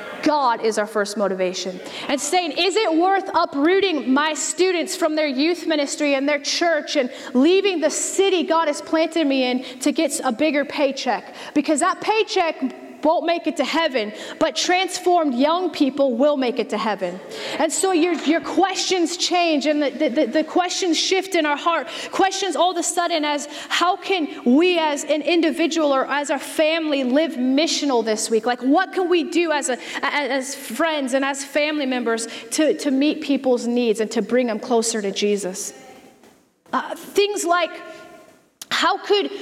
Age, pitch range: 30-49, 275-335 Hz